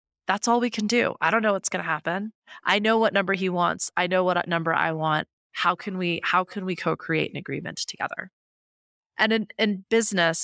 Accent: American